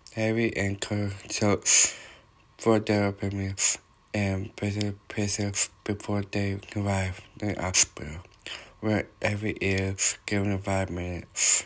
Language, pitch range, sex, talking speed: English, 100-110 Hz, male, 110 wpm